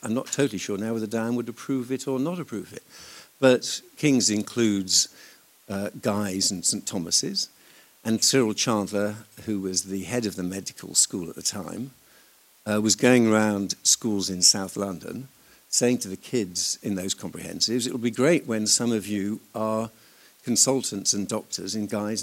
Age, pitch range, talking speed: 60-79, 100-120 Hz, 175 wpm